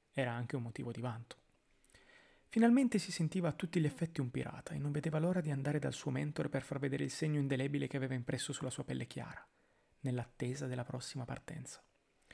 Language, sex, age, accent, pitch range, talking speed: Italian, male, 30-49, native, 130-155 Hz, 200 wpm